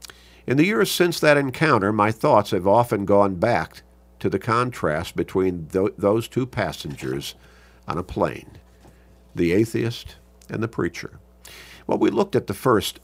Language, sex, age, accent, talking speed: English, male, 50-69, American, 150 wpm